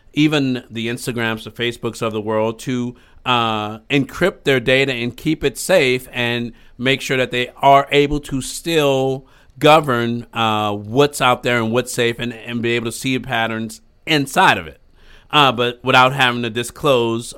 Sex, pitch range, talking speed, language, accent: male, 115-135 Hz, 175 wpm, English, American